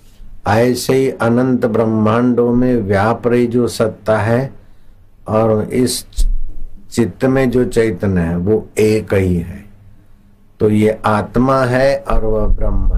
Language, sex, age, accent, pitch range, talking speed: Hindi, male, 60-79, native, 95-125 Hz, 125 wpm